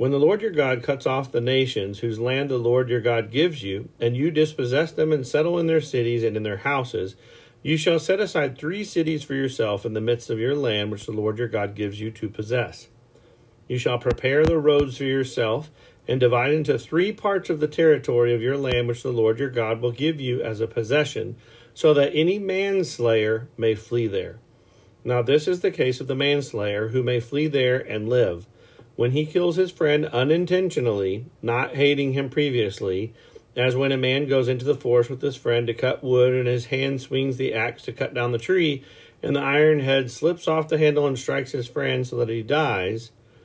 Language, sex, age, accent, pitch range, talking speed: English, male, 40-59, American, 115-150 Hz, 215 wpm